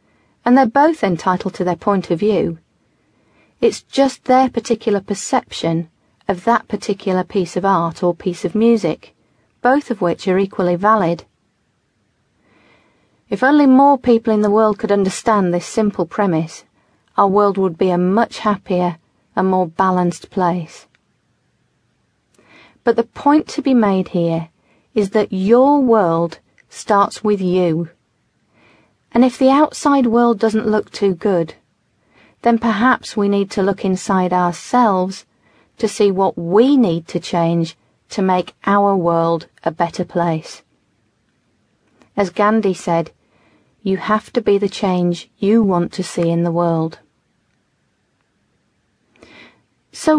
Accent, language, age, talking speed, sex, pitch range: British, English, 40-59, 135 wpm, female, 175-230 Hz